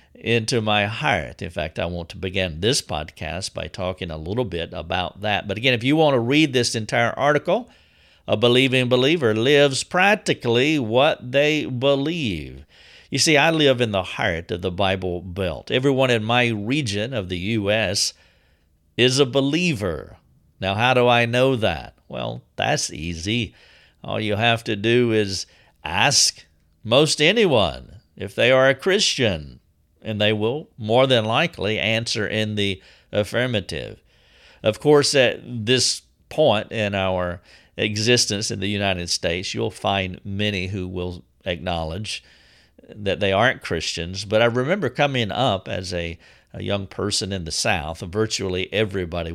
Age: 50-69